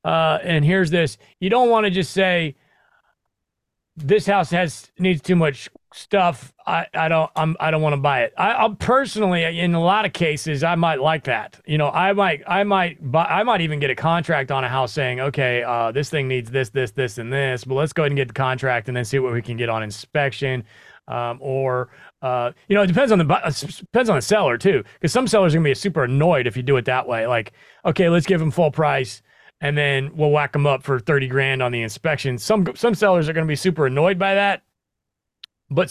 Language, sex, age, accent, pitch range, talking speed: English, male, 30-49, American, 130-175 Hz, 235 wpm